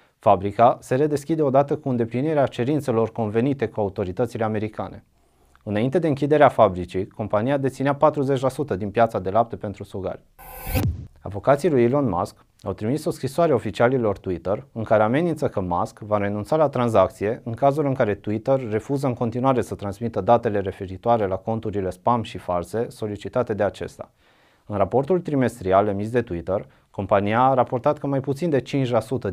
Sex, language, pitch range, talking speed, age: male, Romanian, 105-135 Hz, 160 wpm, 30-49